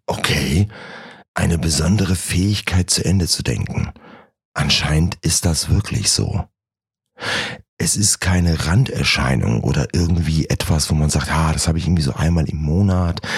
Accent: German